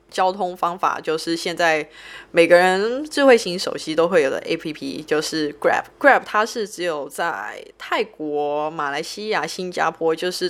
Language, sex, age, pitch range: Thai, female, 20-39, 155-215 Hz